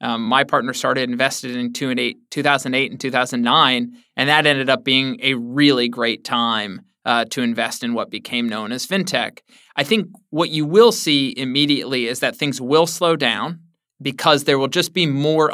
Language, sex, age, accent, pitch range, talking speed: English, male, 20-39, American, 130-165 Hz, 180 wpm